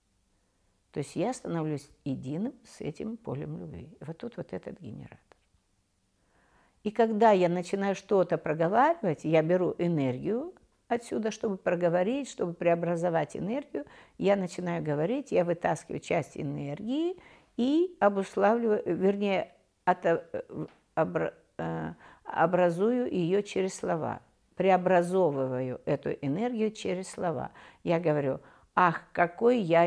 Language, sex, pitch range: Russian, female, 140-220 Hz